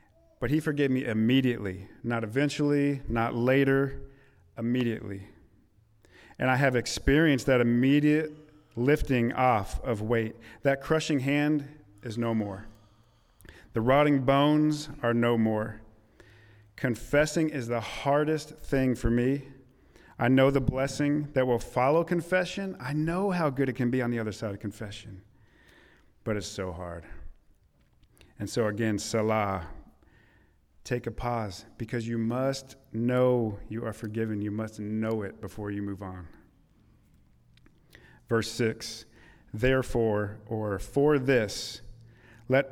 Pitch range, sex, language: 110-140 Hz, male, English